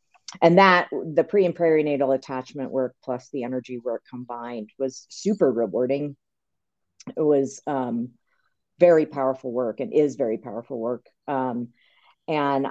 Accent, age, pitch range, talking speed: American, 40-59, 125-145 Hz, 135 wpm